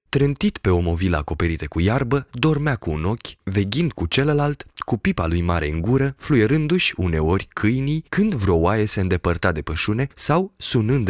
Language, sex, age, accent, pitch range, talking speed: Romanian, male, 20-39, native, 85-130 Hz, 175 wpm